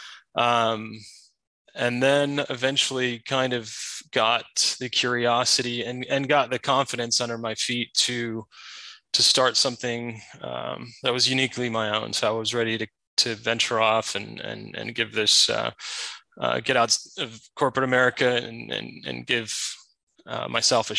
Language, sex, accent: English, male, American